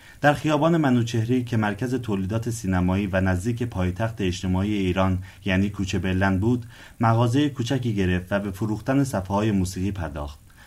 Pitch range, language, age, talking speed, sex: 95-115 Hz, Persian, 30-49, 140 wpm, male